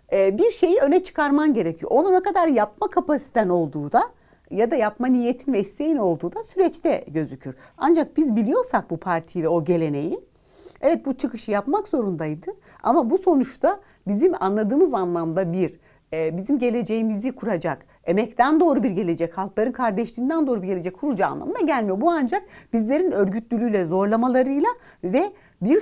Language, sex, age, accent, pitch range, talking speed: Turkish, female, 60-79, native, 190-295 Hz, 150 wpm